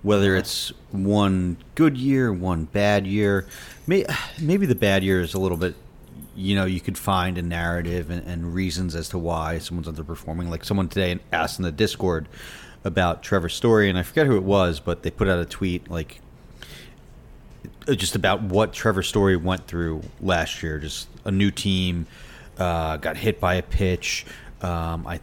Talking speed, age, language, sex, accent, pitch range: 180 wpm, 30-49, English, male, American, 85-120 Hz